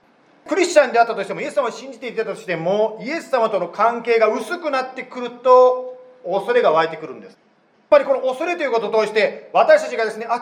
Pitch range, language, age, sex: 215-300 Hz, Japanese, 40-59, male